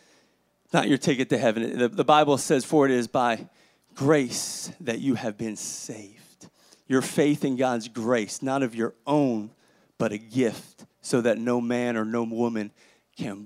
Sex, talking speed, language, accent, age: male, 170 wpm, English, American, 30-49